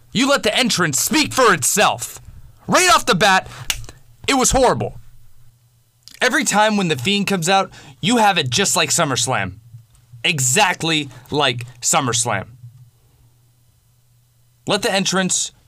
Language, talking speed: English, 125 wpm